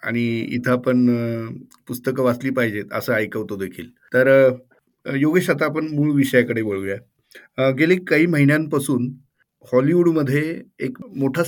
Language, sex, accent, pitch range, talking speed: Marathi, male, native, 120-140 Hz, 120 wpm